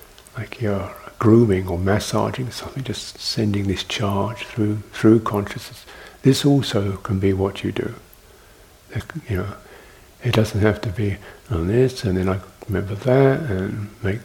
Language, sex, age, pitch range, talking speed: English, male, 60-79, 95-115 Hz, 155 wpm